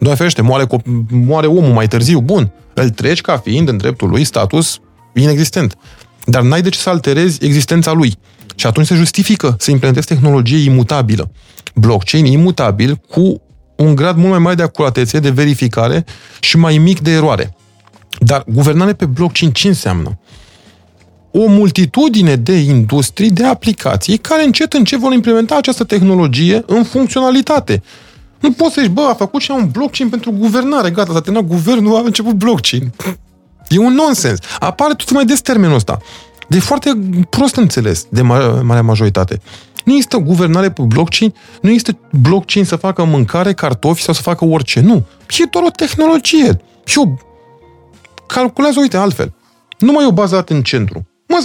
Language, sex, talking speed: Romanian, male, 170 wpm